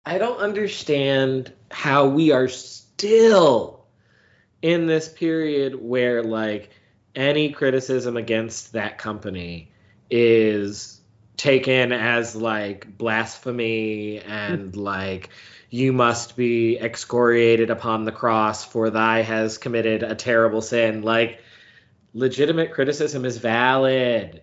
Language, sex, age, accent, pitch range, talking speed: English, male, 20-39, American, 115-150 Hz, 105 wpm